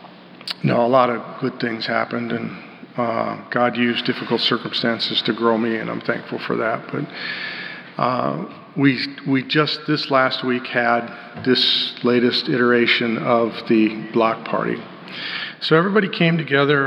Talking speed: 145 wpm